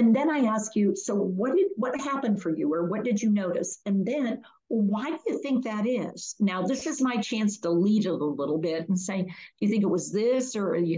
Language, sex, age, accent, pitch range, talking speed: English, female, 50-69, American, 185-240 Hz, 255 wpm